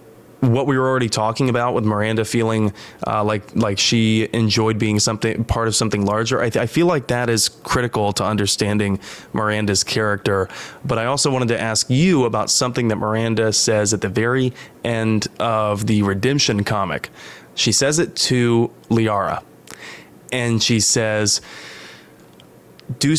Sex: male